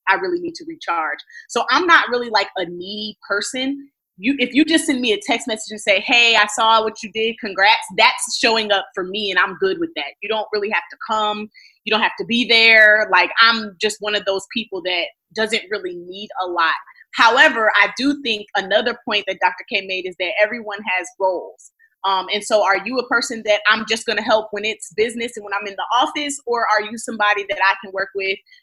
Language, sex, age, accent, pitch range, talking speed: English, female, 20-39, American, 190-230 Hz, 235 wpm